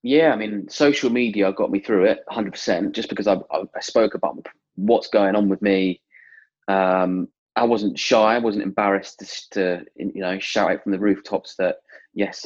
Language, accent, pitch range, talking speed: English, British, 95-115 Hz, 190 wpm